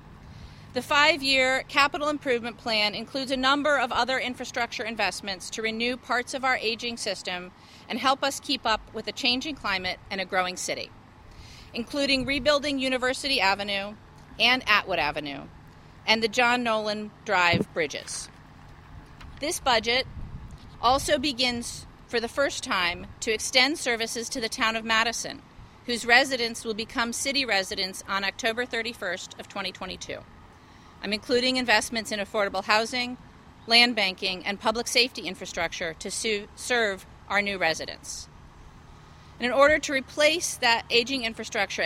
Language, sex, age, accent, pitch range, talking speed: English, female, 40-59, American, 205-255 Hz, 140 wpm